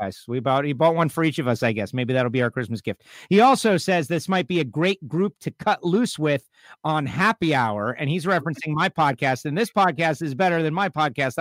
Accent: American